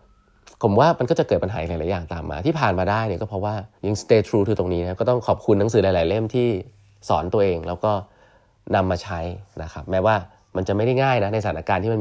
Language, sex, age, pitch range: Thai, male, 20-39, 95-110 Hz